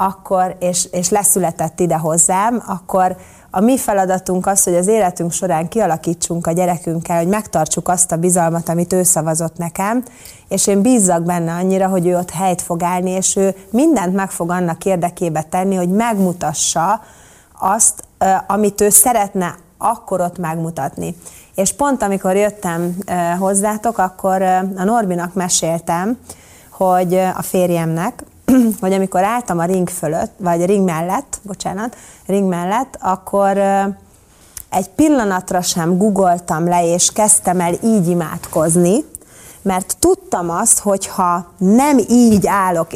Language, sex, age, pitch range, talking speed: Hungarian, female, 30-49, 175-205 Hz, 135 wpm